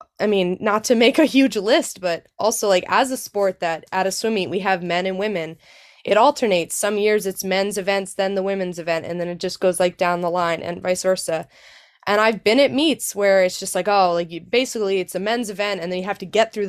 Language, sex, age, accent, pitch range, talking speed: English, female, 20-39, American, 180-220 Hz, 250 wpm